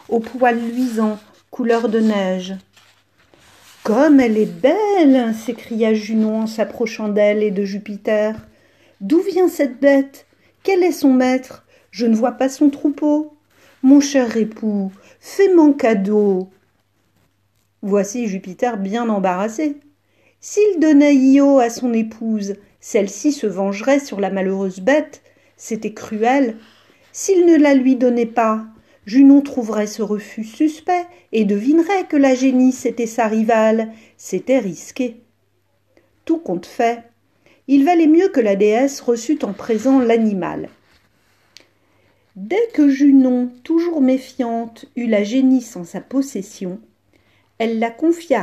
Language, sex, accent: French, female, French